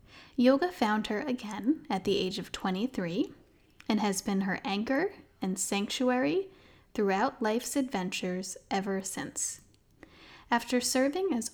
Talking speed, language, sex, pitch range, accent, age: 125 wpm, English, female, 195-260 Hz, American, 10-29